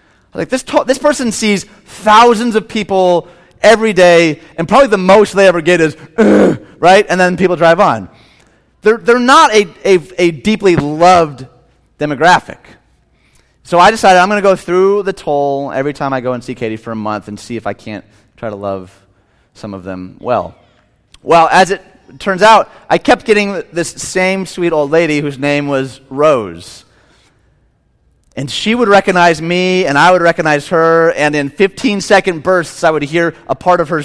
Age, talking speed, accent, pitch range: 30-49, 185 wpm, American, 135-185 Hz